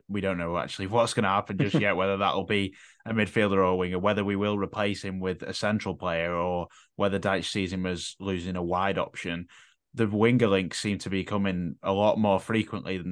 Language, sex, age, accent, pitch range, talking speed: English, male, 10-29, British, 90-105 Hz, 225 wpm